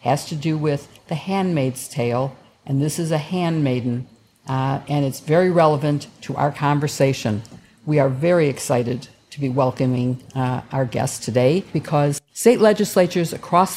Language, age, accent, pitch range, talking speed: English, 50-69, American, 135-180 Hz, 155 wpm